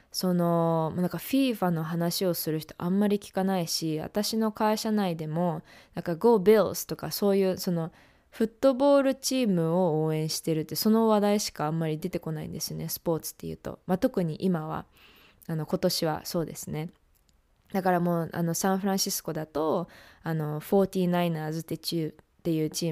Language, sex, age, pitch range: English, female, 20-39, 160-190 Hz